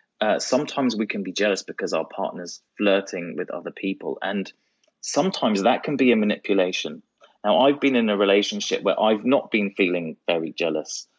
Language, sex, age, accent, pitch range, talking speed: English, male, 30-49, British, 100-135 Hz, 175 wpm